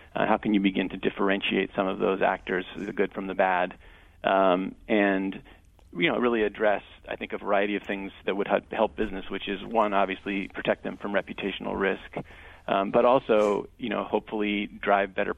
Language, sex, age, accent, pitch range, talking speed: English, male, 40-59, American, 95-105 Hz, 185 wpm